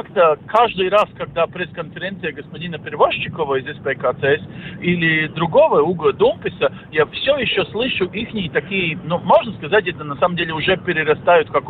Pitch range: 150-210 Hz